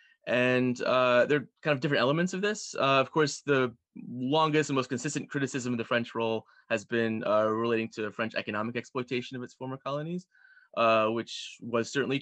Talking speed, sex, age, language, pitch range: 190 wpm, male, 20-39, English, 110-140 Hz